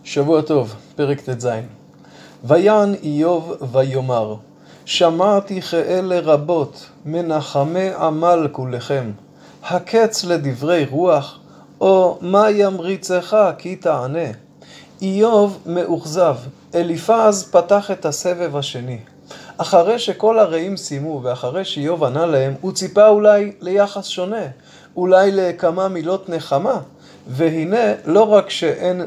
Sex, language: male, Hebrew